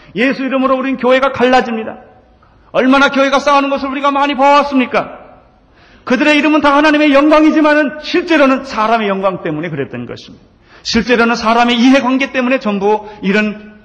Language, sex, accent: Korean, male, native